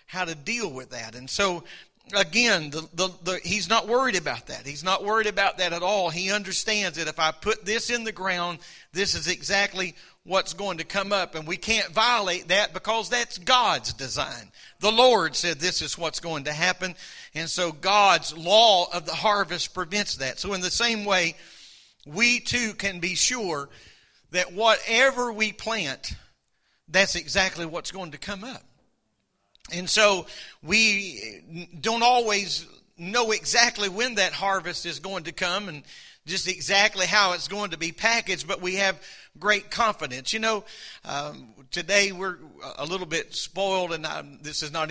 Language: English